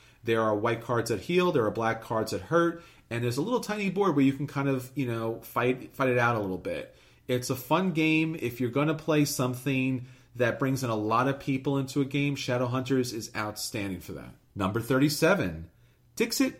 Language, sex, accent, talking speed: English, male, American, 215 wpm